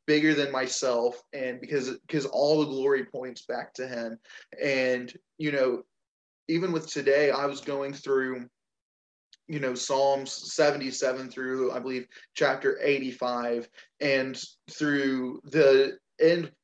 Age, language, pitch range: 20-39, English, 130-150 Hz